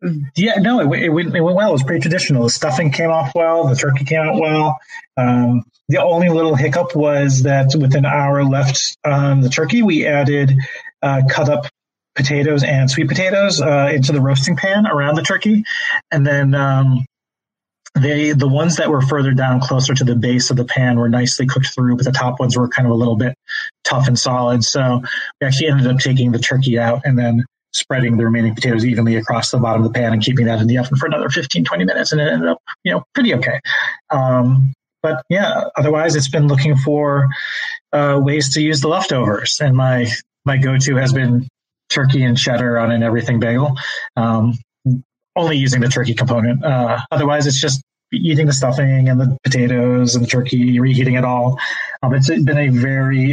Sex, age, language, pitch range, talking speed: male, 30-49, English, 125-150 Hz, 200 wpm